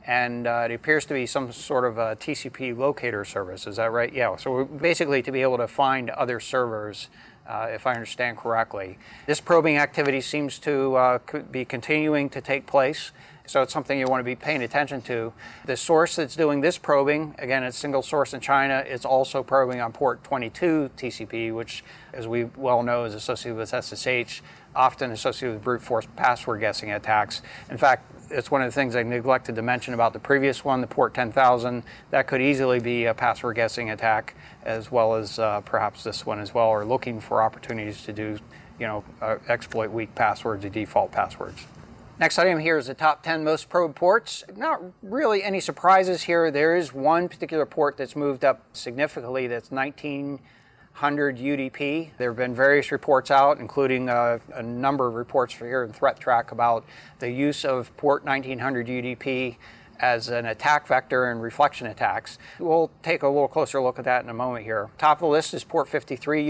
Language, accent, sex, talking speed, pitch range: English, American, male, 195 wpm, 120-145 Hz